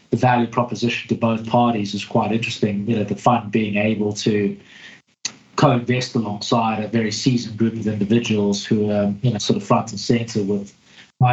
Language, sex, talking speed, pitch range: English, male, 185 wpm, 110-130 Hz